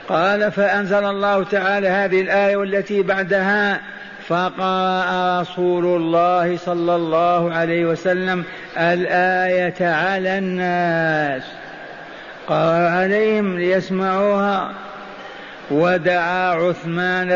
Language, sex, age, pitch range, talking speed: Arabic, male, 50-69, 170-200 Hz, 80 wpm